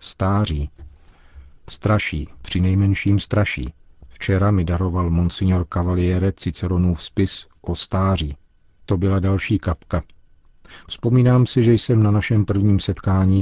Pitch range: 85-105 Hz